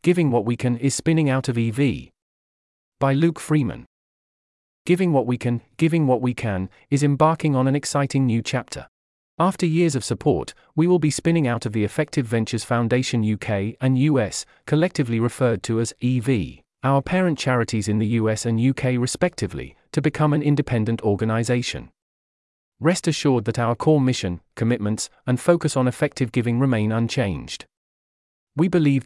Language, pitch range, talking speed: English, 110-145 Hz, 165 wpm